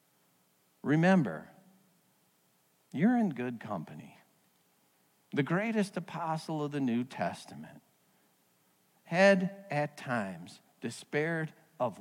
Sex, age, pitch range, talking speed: male, 50-69, 145-230 Hz, 85 wpm